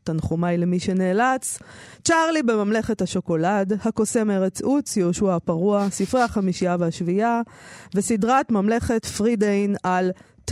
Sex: female